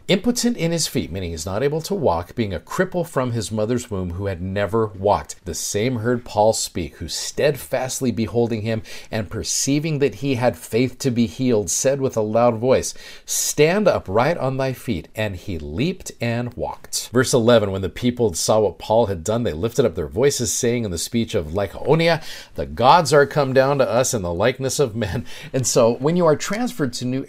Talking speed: 210 wpm